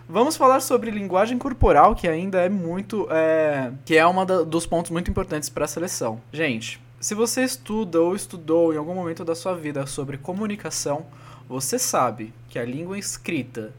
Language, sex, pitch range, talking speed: Portuguese, male, 135-195 Hz, 170 wpm